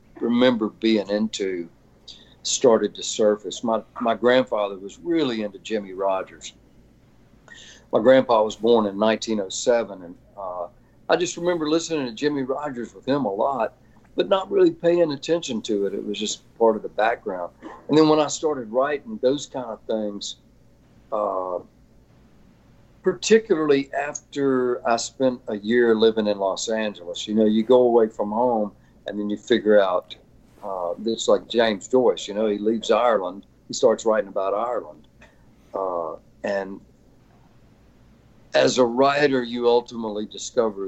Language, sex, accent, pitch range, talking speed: English, male, American, 105-145 Hz, 150 wpm